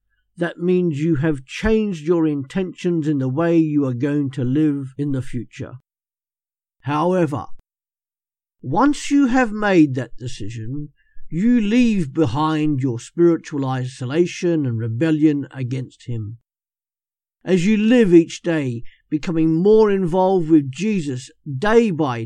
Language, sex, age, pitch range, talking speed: English, male, 50-69, 135-190 Hz, 125 wpm